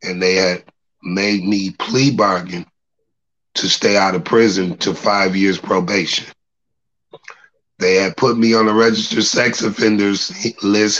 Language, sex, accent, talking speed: English, male, American, 140 wpm